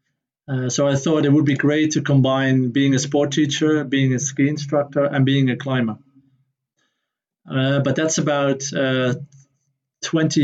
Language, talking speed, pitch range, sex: English, 160 wpm, 135-150 Hz, male